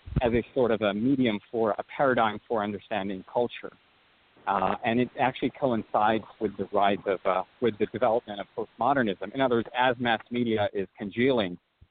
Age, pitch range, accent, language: 40-59, 110-140 Hz, American, English